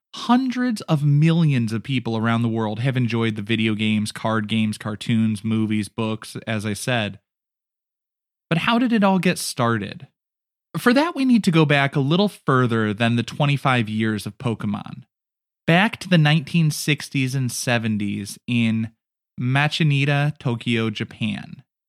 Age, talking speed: 20-39, 150 wpm